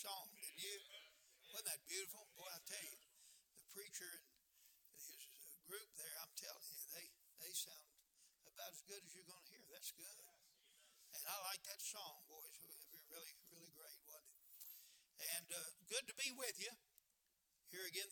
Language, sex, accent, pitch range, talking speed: English, male, American, 165-205 Hz, 170 wpm